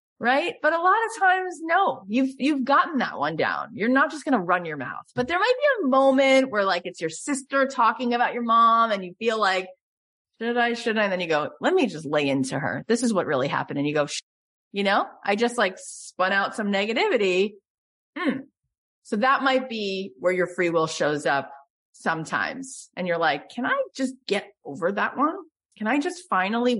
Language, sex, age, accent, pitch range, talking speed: English, female, 30-49, American, 185-255 Hz, 220 wpm